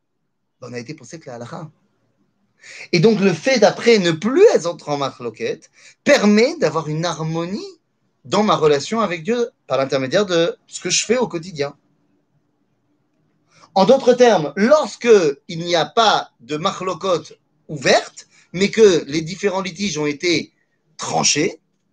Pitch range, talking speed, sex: 160-225 Hz, 145 wpm, male